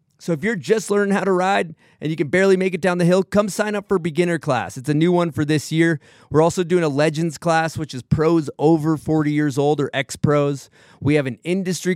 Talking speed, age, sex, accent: 245 wpm, 30-49, male, American